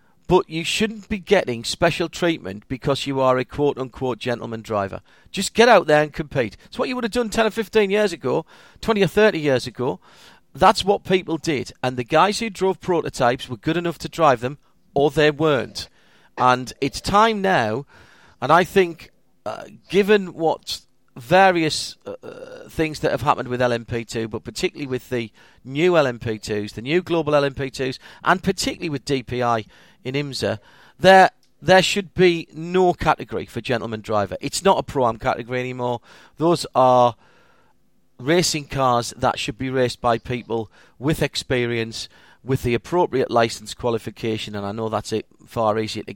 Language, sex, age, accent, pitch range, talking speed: English, male, 40-59, British, 120-175 Hz, 170 wpm